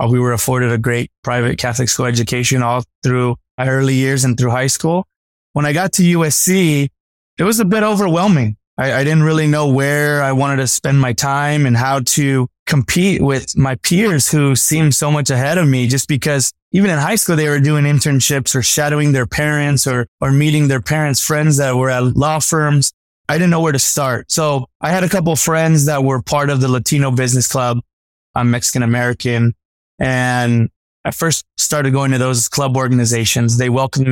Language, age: English, 20-39